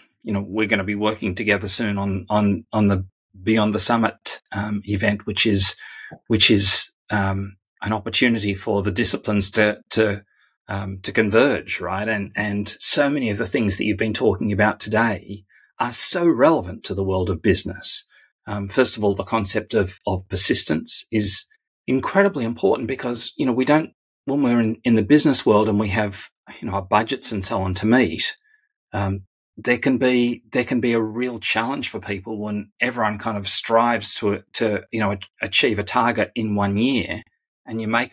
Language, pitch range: English, 100-115 Hz